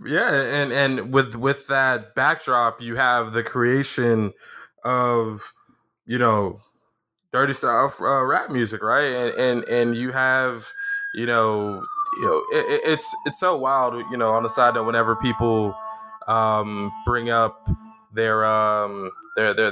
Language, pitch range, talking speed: English, 115-140 Hz, 150 wpm